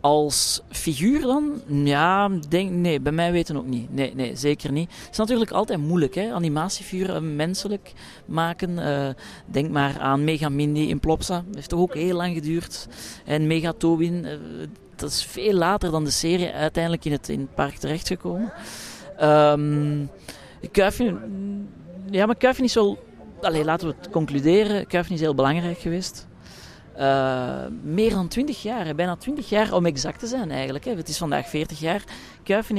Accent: Belgian